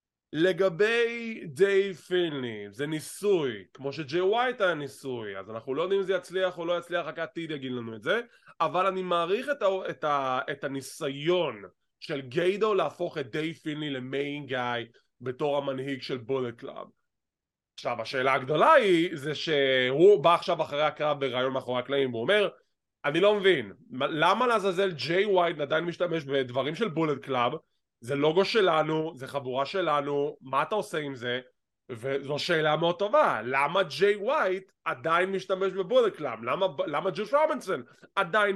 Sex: male